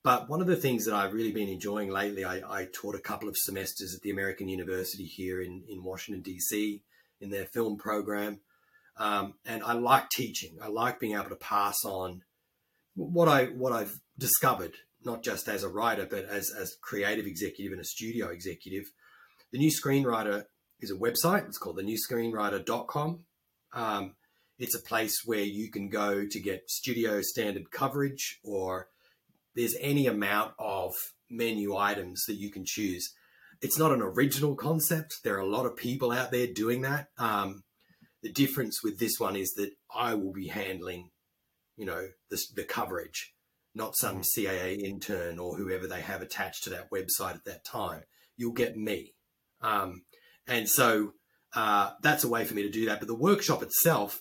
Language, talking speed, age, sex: English, 180 wpm, 30-49, male